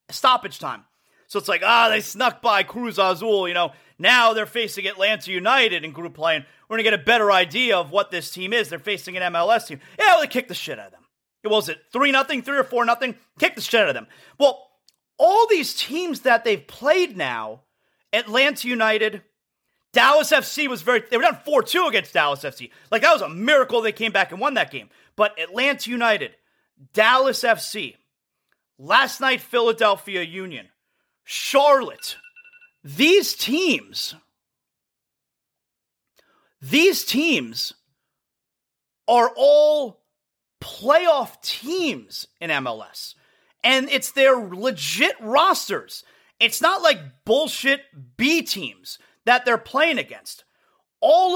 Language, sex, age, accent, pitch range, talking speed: English, male, 30-49, American, 205-290 Hz, 155 wpm